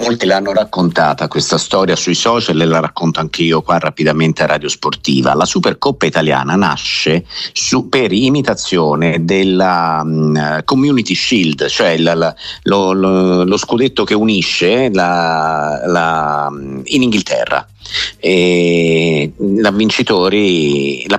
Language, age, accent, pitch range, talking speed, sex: Italian, 50-69, native, 85-110 Hz, 125 wpm, male